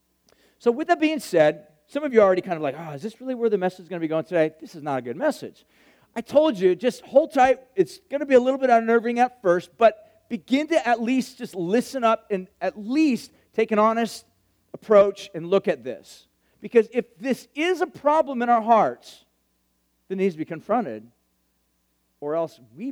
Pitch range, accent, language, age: 150-245 Hz, American, English, 40-59